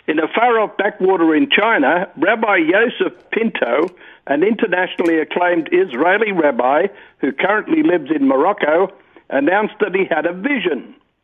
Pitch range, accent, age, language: 170-230 Hz, South African, 60-79, English